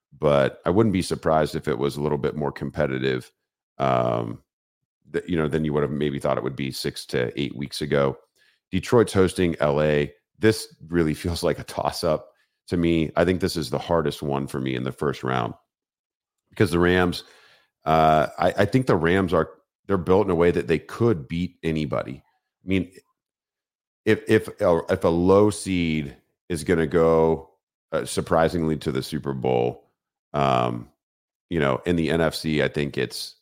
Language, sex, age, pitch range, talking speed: English, male, 40-59, 70-80 Hz, 185 wpm